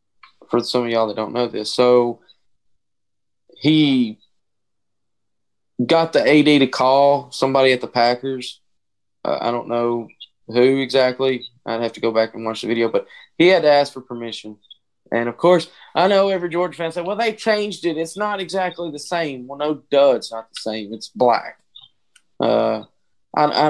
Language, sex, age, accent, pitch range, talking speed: English, male, 20-39, American, 110-150 Hz, 180 wpm